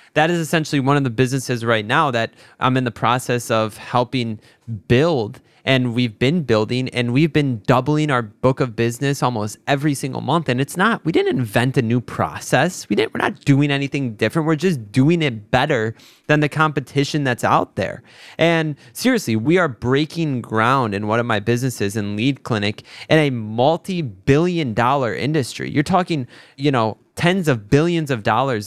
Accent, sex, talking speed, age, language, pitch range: American, male, 190 wpm, 20-39, English, 120-155 Hz